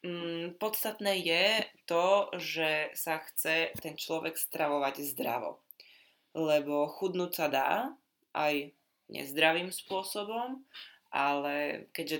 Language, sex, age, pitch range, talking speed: Slovak, female, 20-39, 150-185 Hz, 95 wpm